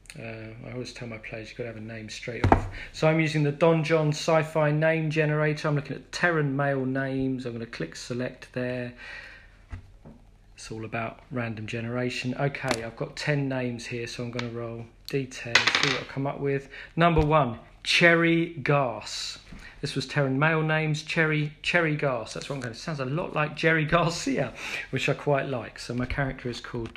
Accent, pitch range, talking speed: British, 115-150 Hz, 200 wpm